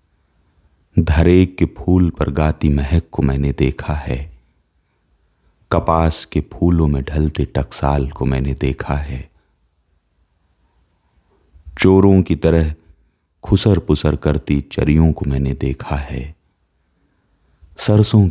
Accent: native